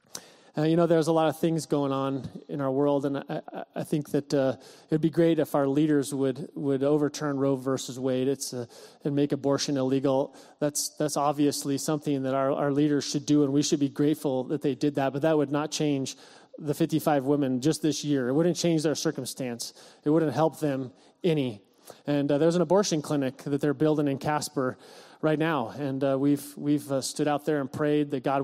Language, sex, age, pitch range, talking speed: English, male, 30-49, 140-155 Hz, 215 wpm